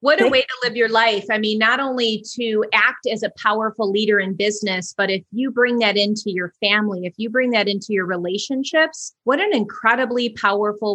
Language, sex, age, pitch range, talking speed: English, female, 30-49, 205-245 Hz, 210 wpm